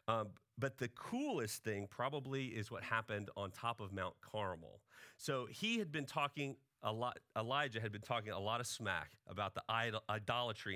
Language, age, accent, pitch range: English, 40-59, American, 105-135 Hz